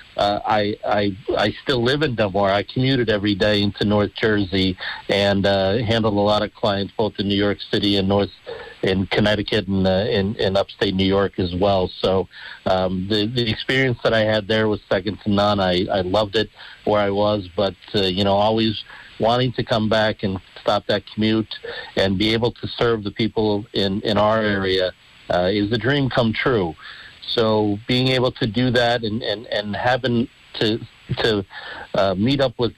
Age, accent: 50-69, American